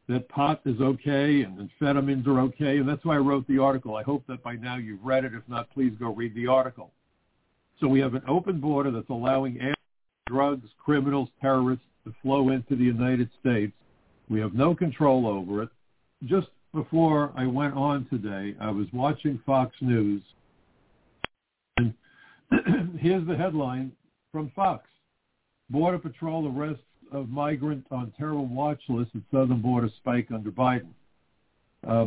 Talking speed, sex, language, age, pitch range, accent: 160 wpm, male, English, 60-79, 120-145 Hz, American